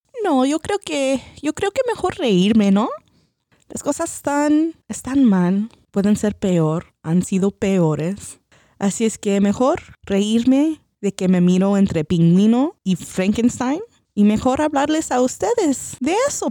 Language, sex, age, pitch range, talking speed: English, female, 20-39, 170-250 Hz, 145 wpm